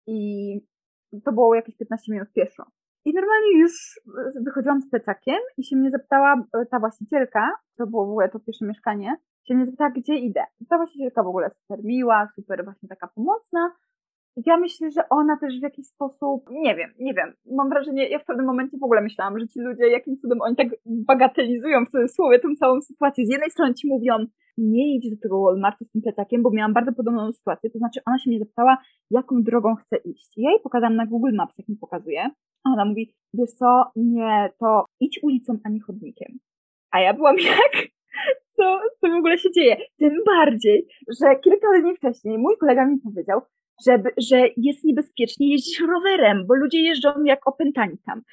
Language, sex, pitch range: Polish, female, 225-295 Hz